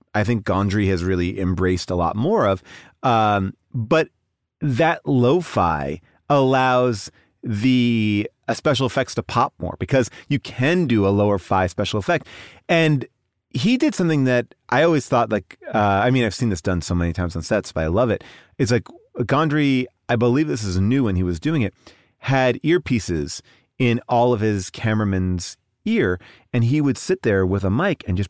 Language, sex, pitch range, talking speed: English, male, 95-125 Hz, 180 wpm